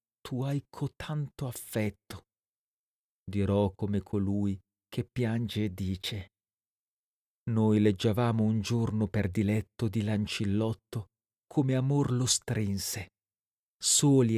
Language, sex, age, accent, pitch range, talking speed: Italian, male, 40-59, native, 100-120 Hz, 100 wpm